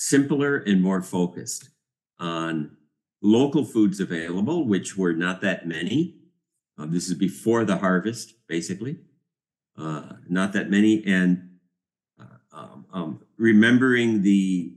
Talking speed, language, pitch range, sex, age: 120 wpm, English, 85-105 Hz, male, 50-69